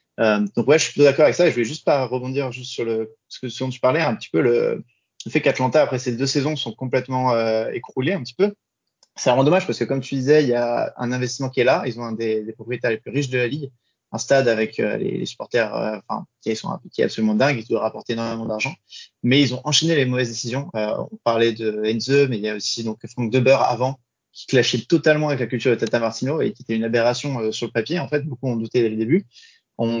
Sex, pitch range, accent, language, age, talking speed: male, 115-135 Hz, French, French, 20-39, 270 wpm